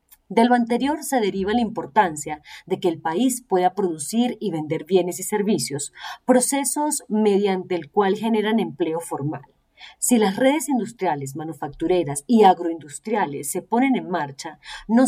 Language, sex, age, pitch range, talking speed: Spanish, female, 40-59, 165-215 Hz, 145 wpm